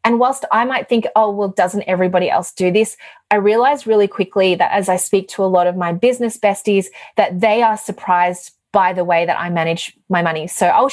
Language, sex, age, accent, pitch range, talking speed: English, female, 30-49, Australian, 180-225 Hz, 225 wpm